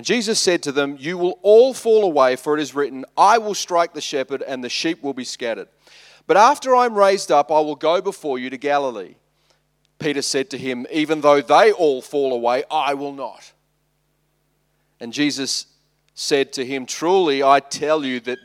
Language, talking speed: English, 195 wpm